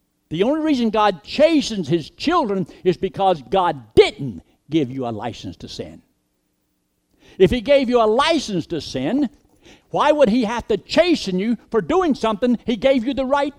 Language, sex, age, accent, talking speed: English, male, 60-79, American, 175 wpm